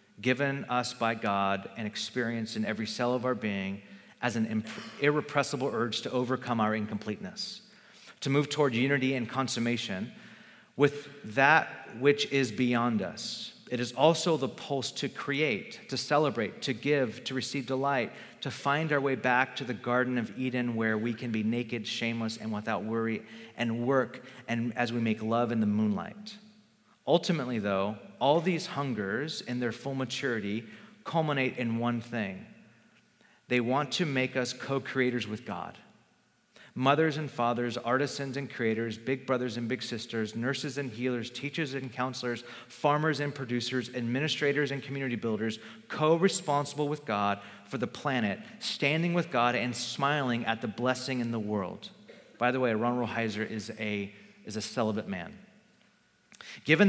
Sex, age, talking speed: male, 30-49, 160 wpm